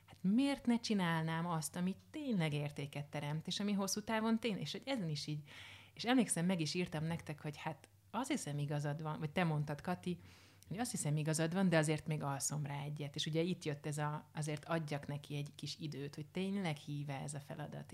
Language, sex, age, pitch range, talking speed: Hungarian, male, 30-49, 150-185 Hz, 210 wpm